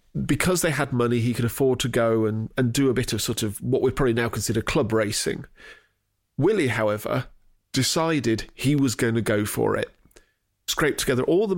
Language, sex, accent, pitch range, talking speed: English, male, British, 110-145 Hz, 195 wpm